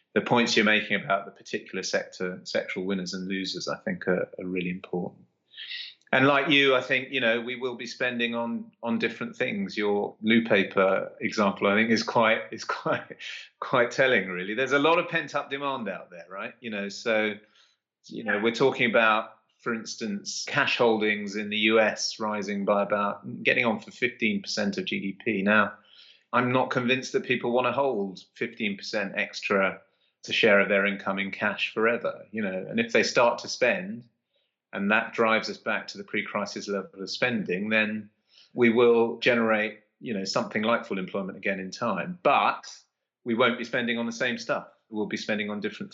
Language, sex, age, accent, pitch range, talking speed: English, male, 30-49, British, 100-120 Hz, 190 wpm